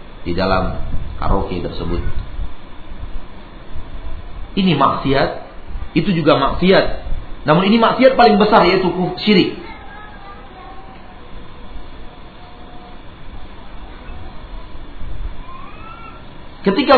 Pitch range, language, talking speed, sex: 95-160 Hz, Malay, 60 wpm, male